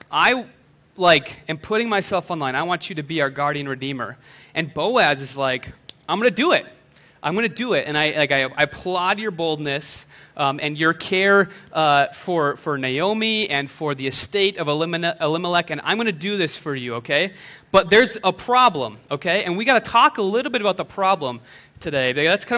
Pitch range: 150-200 Hz